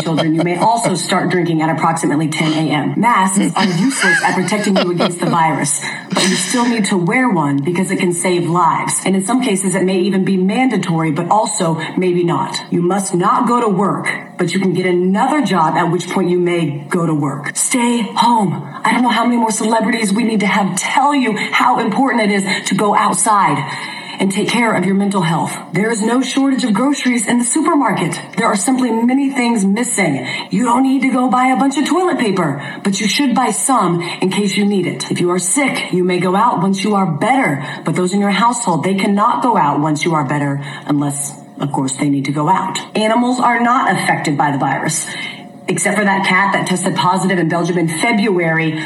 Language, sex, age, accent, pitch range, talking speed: English, female, 30-49, American, 175-230 Hz, 220 wpm